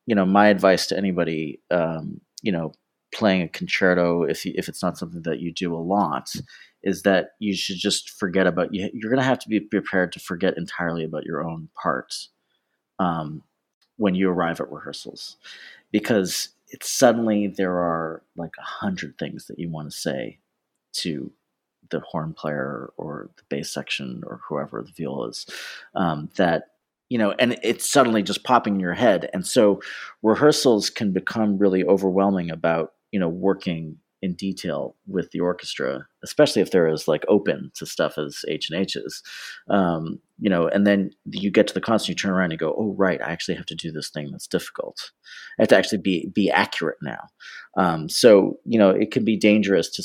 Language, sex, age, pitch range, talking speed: English, male, 30-49, 80-100 Hz, 195 wpm